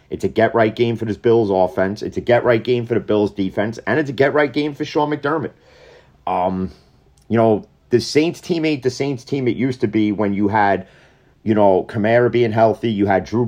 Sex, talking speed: male, 220 wpm